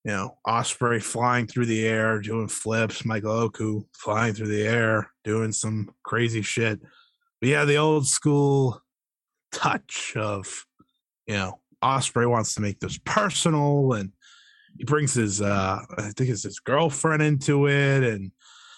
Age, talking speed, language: 20-39, 150 wpm, English